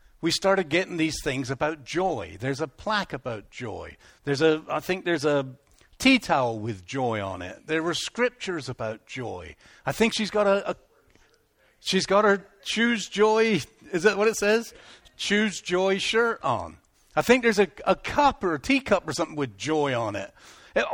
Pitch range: 135-205 Hz